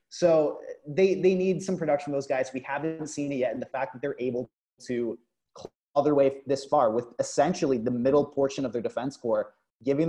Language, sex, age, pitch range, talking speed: English, male, 30-49, 125-180 Hz, 200 wpm